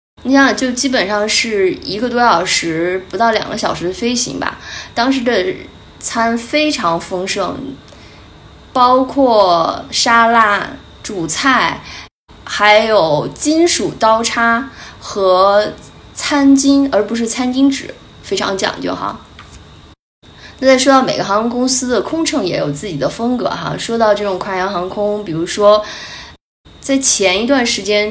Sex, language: female, Chinese